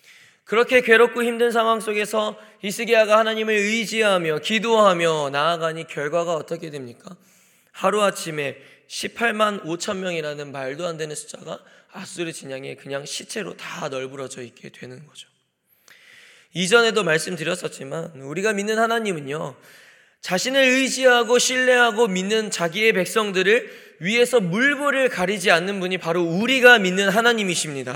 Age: 20-39